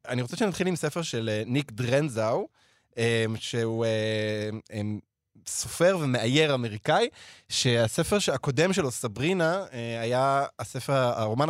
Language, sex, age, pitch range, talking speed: Hebrew, male, 20-39, 115-150 Hz, 100 wpm